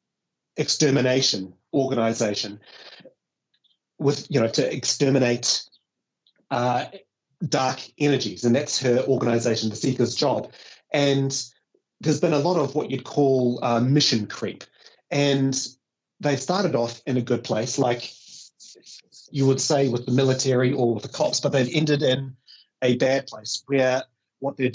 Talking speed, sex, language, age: 140 wpm, male, English, 30-49